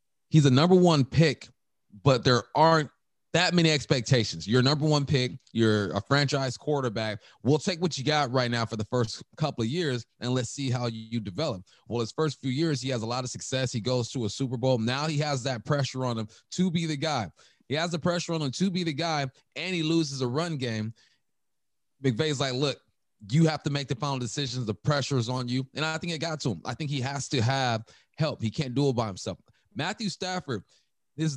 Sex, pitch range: male, 120-155 Hz